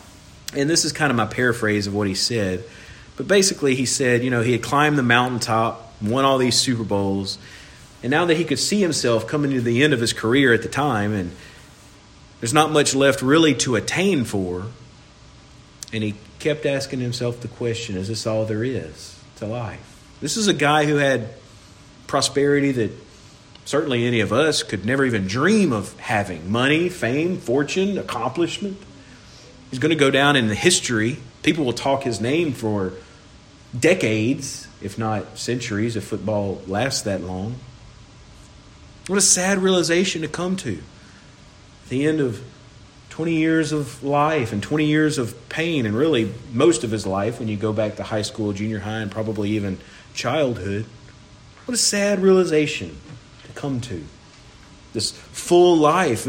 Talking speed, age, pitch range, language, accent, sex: 170 wpm, 40-59, 110-150 Hz, English, American, male